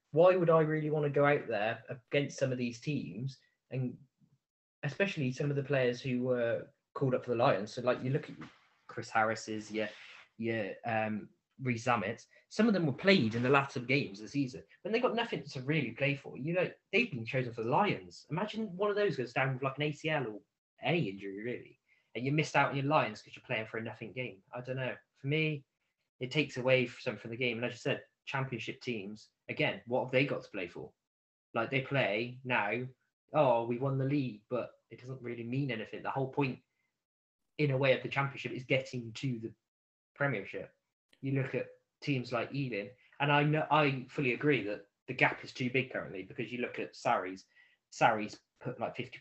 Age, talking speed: 20-39, 215 wpm